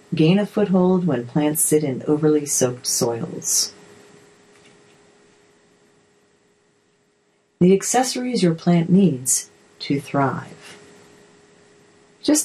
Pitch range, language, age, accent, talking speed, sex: 145-200 Hz, English, 40-59, American, 80 wpm, female